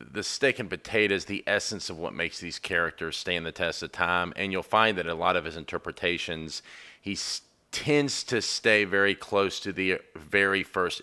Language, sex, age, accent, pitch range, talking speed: English, male, 40-59, American, 90-105 Hz, 190 wpm